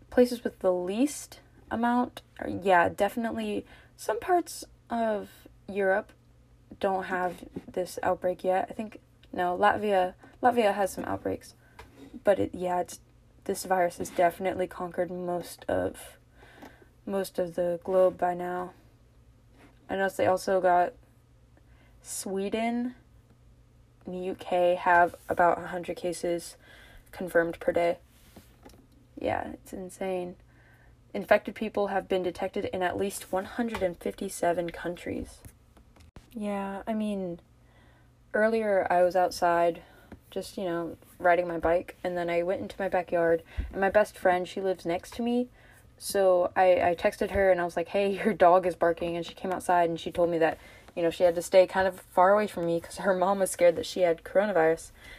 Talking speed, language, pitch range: 155 wpm, English, 175-195 Hz